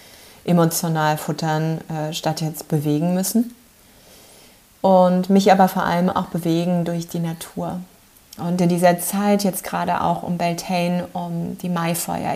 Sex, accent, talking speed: female, German, 135 wpm